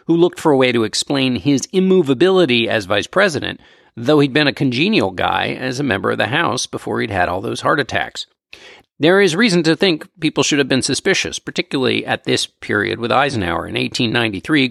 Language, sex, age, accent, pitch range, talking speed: English, male, 50-69, American, 120-175 Hz, 210 wpm